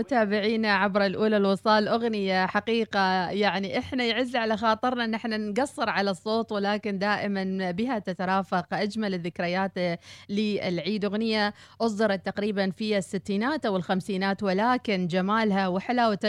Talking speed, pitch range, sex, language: 120 wpm, 195-235 Hz, female, Arabic